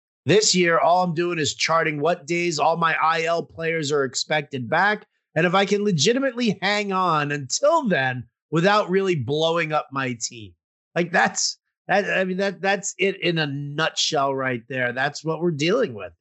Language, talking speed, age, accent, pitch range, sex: English, 180 wpm, 30-49, American, 140-190 Hz, male